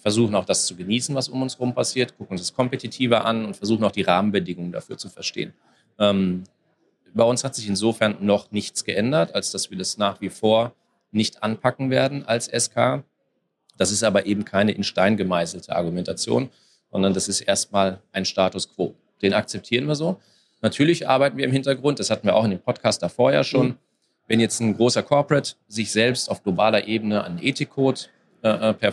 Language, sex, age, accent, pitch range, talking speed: German, male, 40-59, German, 100-125 Hz, 190 wpm